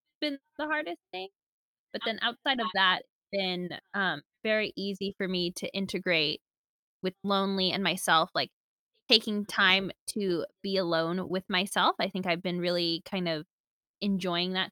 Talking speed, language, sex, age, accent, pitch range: 155 wpm, English, female, 20-39, American, 180-210 Hz